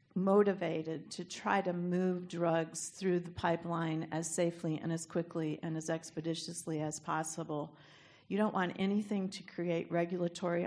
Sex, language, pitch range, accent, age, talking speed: female, English, 160-180 Hz, American, 50-69, 145 wpm